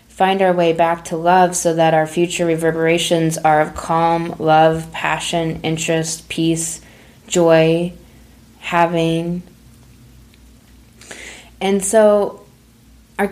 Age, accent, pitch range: 20-39, American, 160-185 Hz